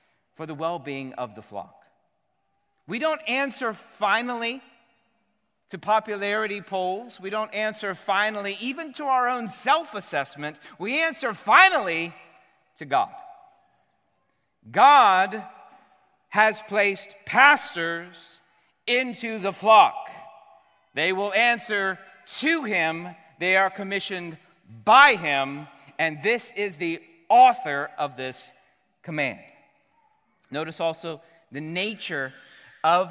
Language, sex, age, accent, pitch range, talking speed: English, male, 40-59, American, 160-230 Hz, 105 wpm